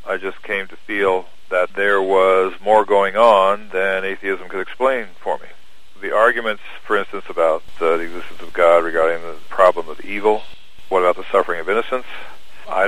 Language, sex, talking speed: English, male, 180 wpm